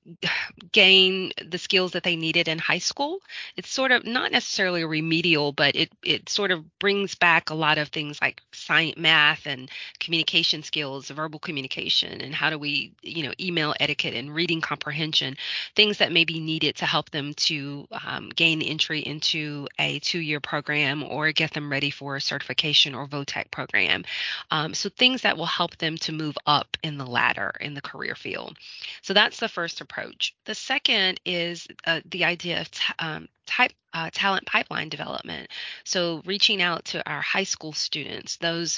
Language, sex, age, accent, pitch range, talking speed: English, female, 30-49, American, 150-175 Hz, 185 wpm